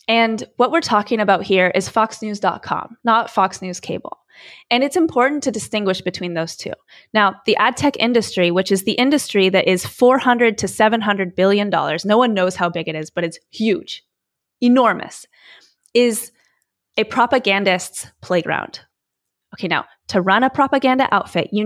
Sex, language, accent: female, English, American